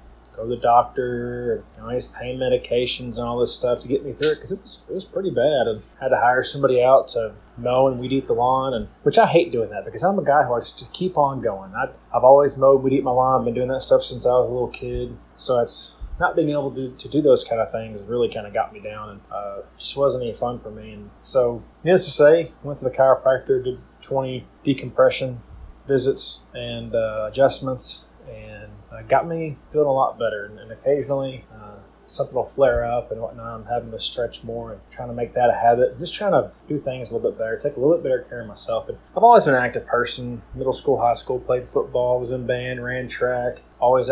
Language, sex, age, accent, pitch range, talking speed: English, male, 20-39, American, 120-140 Hz, 250 wpm